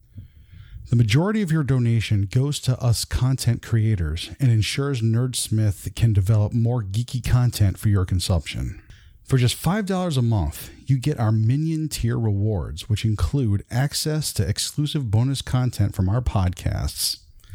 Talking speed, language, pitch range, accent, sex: 145 wpm, English, 100-145 Hz, American, male